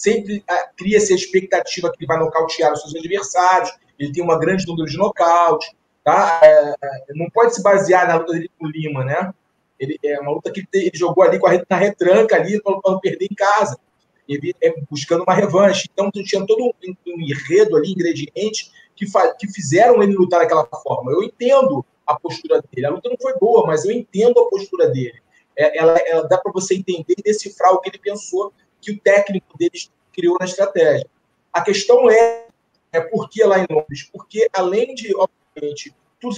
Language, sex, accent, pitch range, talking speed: Portuguese, male, Brazilian, 170-220 Hz, 195 wpm